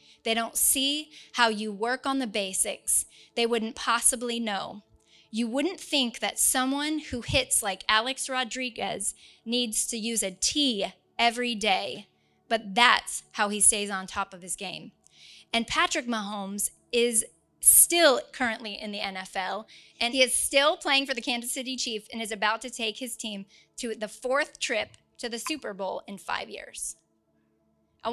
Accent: American